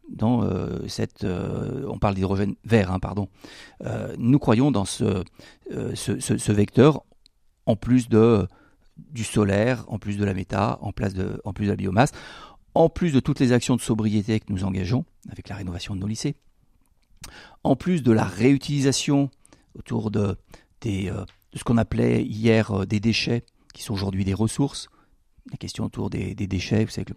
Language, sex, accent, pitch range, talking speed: French, male, French, 100-115 Hz, 175 wpm